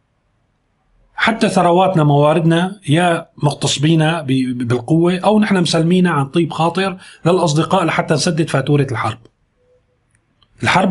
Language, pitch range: Arabic, 120-170 Hz